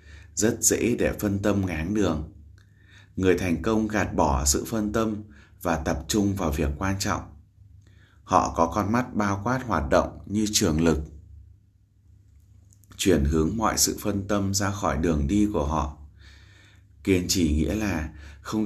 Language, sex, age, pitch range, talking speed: Vietnamese, male, 20-39, 80-105 Hz, 160 wpm